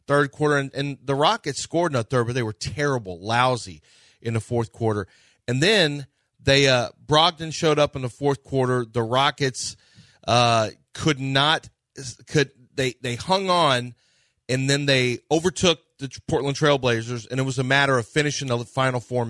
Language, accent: English, American